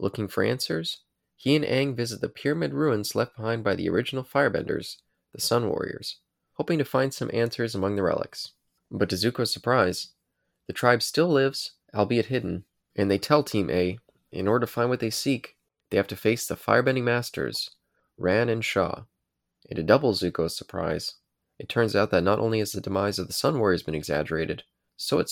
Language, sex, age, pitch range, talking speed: English, male, 20-39, 100-120 Hz, 190 wpm